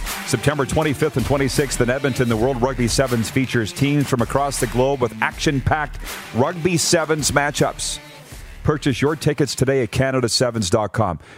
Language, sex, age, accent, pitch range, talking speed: English, male, 40-59, American, 115-145 Hz, 140 wpm